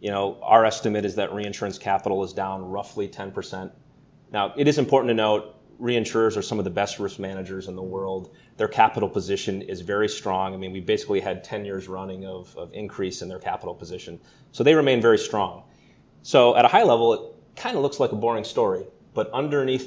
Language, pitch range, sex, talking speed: English, 95-115 Hz, male, 210 wpm